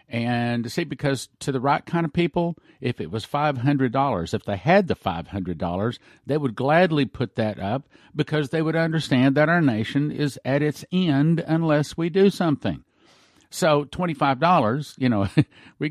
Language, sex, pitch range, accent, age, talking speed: English, male, 110-145 Hz, American, 50-69, 190 wpm